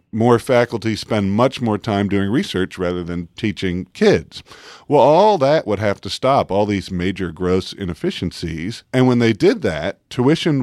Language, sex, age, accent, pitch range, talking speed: English, male, 50-69, American, 90-130 Hz, 170 wpm